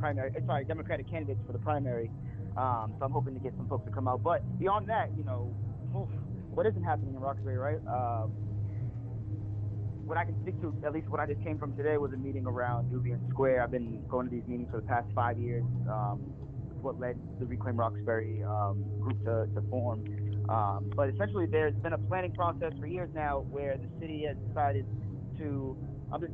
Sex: male